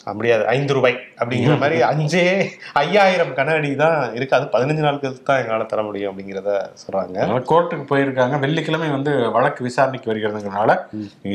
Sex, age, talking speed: male, 30-49, 260 wpm